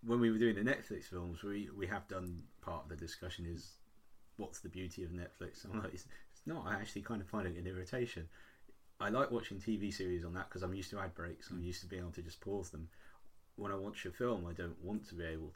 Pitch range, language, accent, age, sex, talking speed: 90-105 Hz, English, British, 30-49, male, 255 wpm